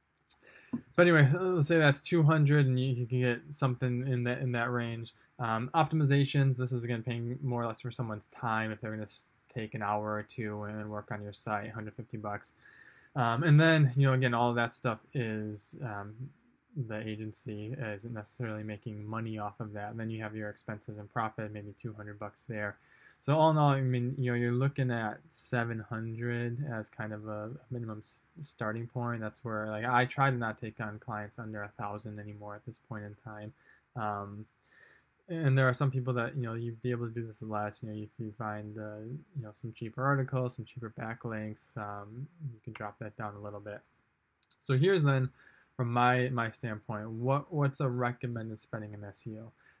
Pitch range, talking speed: 105-130 Hz, 205 wpm